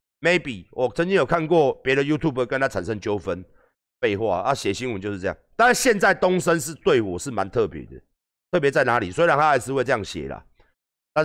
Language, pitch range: Chinese, 95-150 Hz